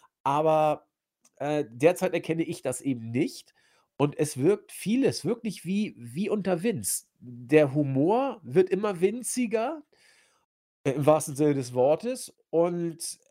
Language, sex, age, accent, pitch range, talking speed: German, male, 40-59, German, 140-200 Hz, 125 wpm